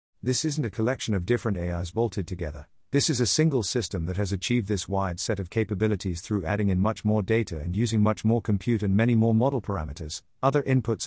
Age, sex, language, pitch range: 50-69, male, English, 95-125 Hz